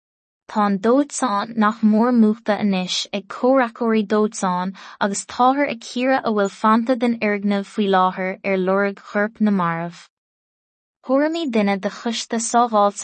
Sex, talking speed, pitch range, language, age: female, 100 wpm, 195-230 Hz, English, 20-39